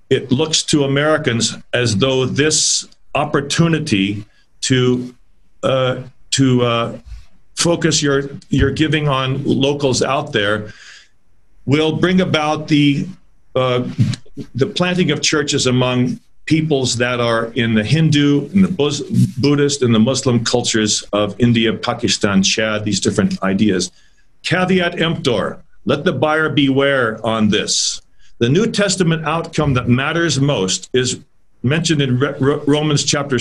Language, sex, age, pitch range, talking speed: English, male, 50-69, 120-155 Hz, 125 wpm